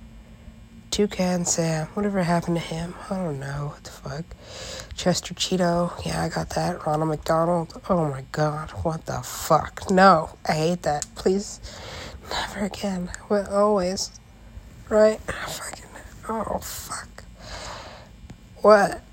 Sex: female